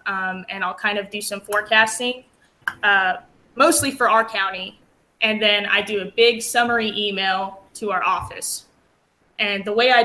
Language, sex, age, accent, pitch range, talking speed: English, female, 20-39, American, 200-230 Hz, 165 wpm